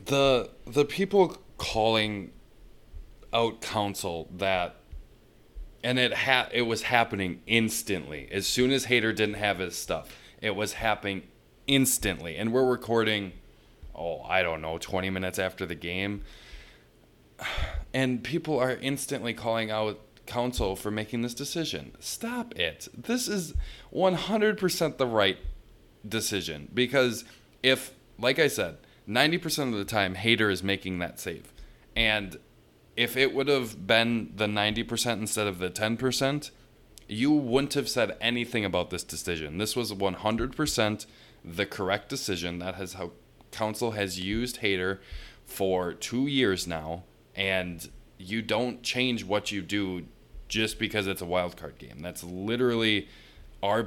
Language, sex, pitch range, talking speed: English, male, 90-120 Hz, 135 wpm